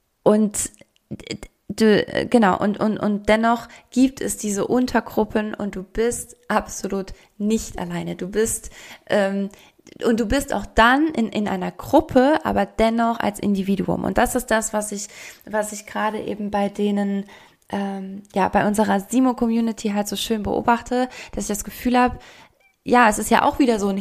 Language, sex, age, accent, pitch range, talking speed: German, female, 20-39, German, 205-240 Hz, 165 wpm